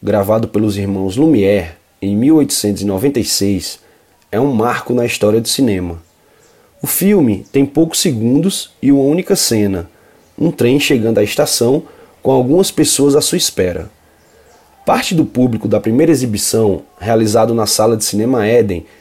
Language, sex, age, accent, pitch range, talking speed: Portuguese, male, 20-39, Brazilian, 105-145 Hz, 140 wpm